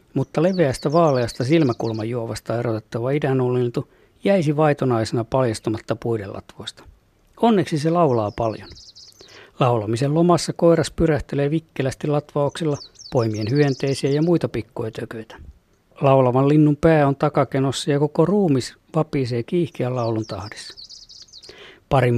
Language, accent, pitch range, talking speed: Finnish, native, 120-155 Hz, 110 wpm